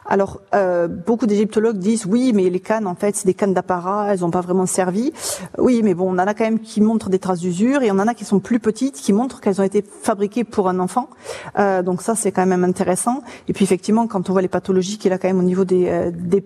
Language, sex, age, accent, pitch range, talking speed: French, female, 40-59, French, 190-225 Hz, 275 wpm